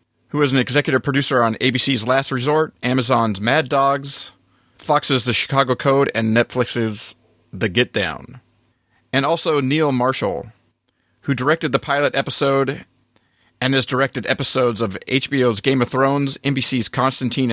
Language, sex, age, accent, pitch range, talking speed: English, male, 40-59, American, 115-140 Hz, 140 wpm